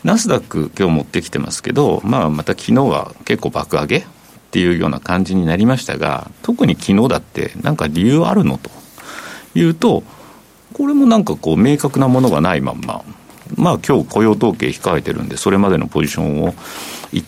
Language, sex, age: Japanese, male, 50-69